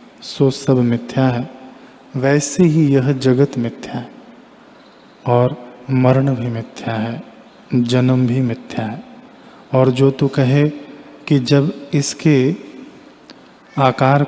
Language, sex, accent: Hindi, male, native